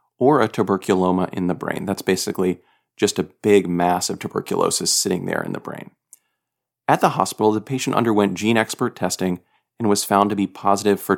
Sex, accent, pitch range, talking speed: male, American, 95-110 Hz, 190 wpm